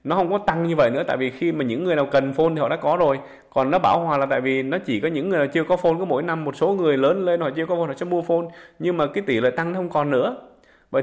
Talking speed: 345 wpm